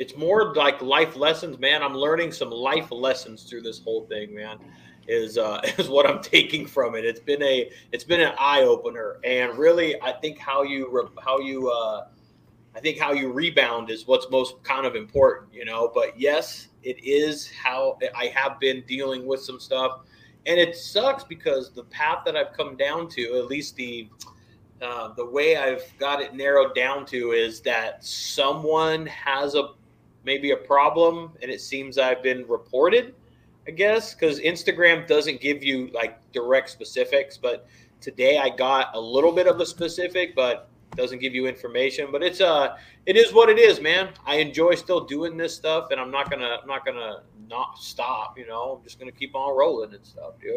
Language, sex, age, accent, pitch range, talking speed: English, male, 30-49, American, 130-180 Hz, 195 wpm